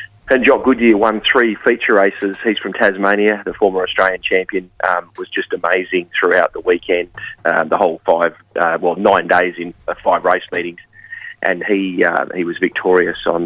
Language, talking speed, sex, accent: English, 185 wpm, male, Australian